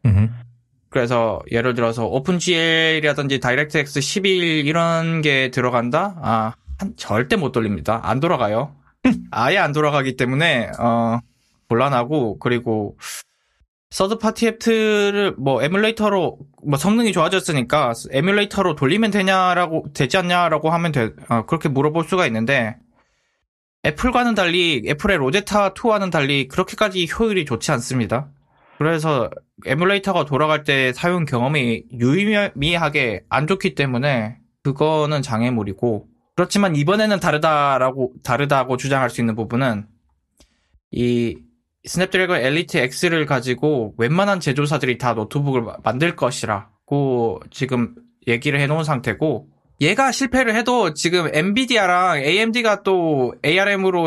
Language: Korean